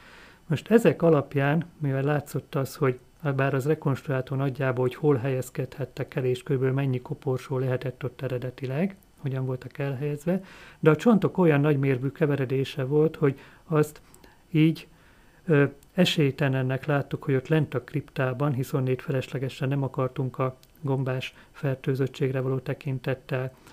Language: Hungarian